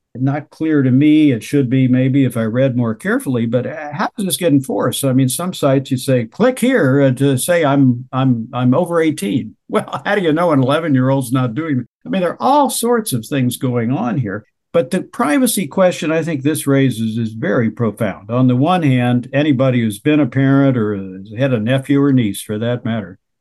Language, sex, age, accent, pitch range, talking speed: English, male, 60-79, American, 120-145 Hz, 220 wpm